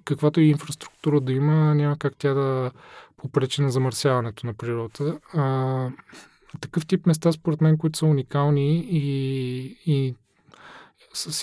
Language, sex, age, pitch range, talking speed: Bulgarian, male, 20-39, 135-160 Hz, 135 wpm